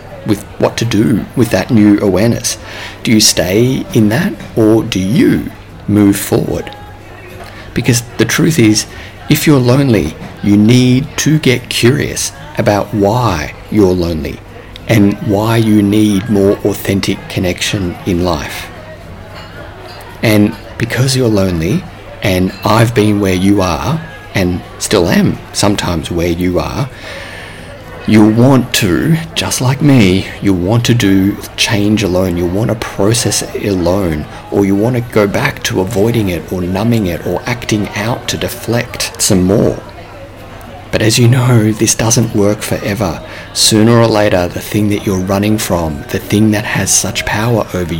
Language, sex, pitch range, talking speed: English, male, 95-115 Hz, 150 wpm